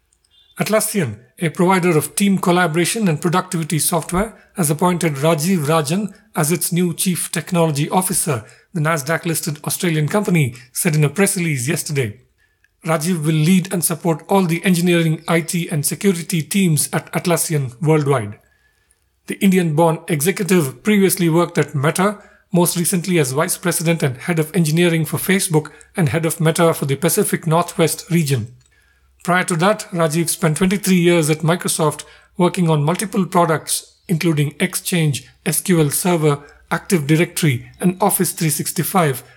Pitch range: 155-185 Hz